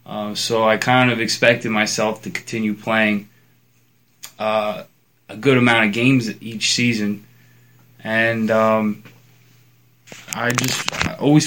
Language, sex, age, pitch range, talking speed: English, male, 20-39, 110-120 Hz, 120 wpm